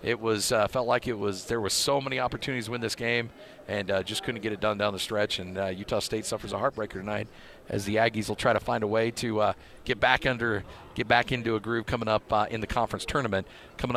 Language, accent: English, American